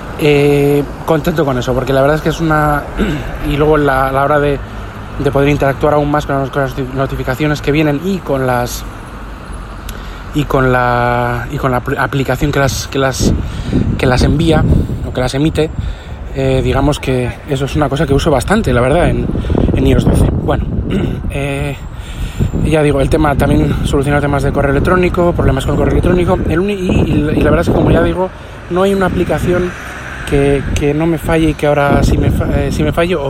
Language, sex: Spanish, male